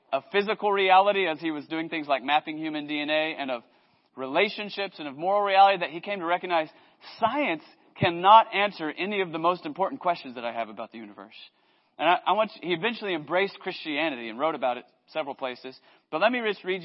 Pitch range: 150-200 Hz